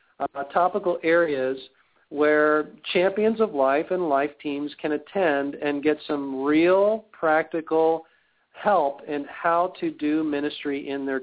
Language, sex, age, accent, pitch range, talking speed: English, male, 40-59, American, 145-175 Hz, 135 wpm